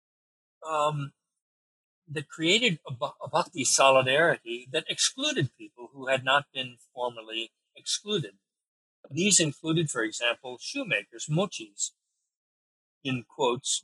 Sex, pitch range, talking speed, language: male, 120-170 Hz, 105 wpm, English